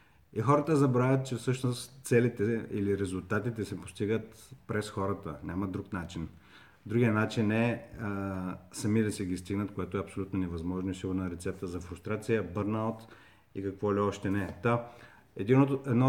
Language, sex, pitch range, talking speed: Bulgarian, male, 95-110 Hz, 155 wpm